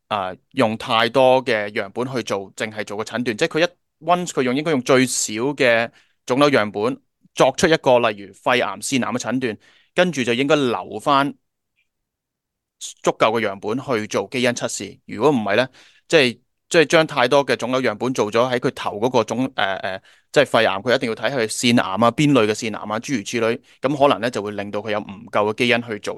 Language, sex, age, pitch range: English, male, 20-39, 110-135 Hz